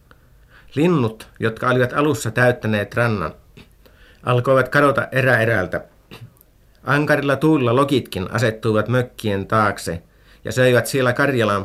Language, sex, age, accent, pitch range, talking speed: Finnish, male, 50-69, native, 100-125 Hz, 105 wpm